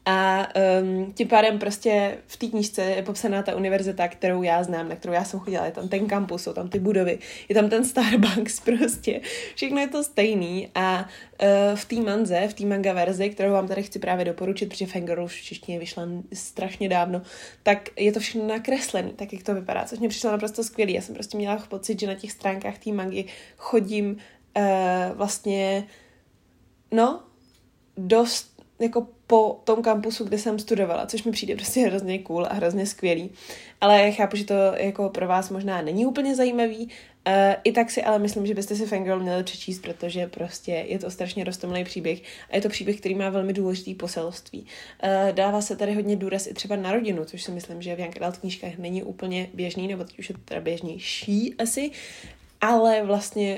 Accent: native